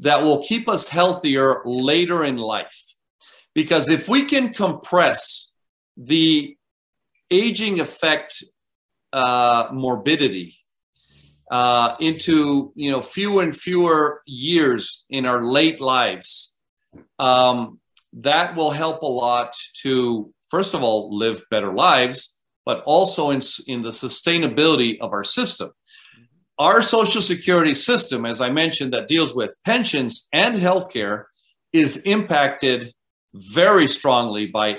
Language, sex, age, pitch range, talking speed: English, male, 50-69, 125-175 Hz, 115 wpm